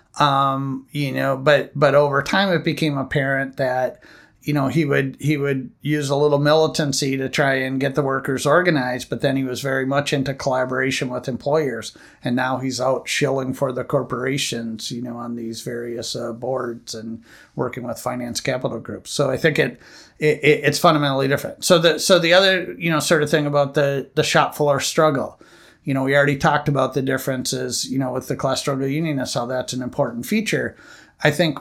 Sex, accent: male, American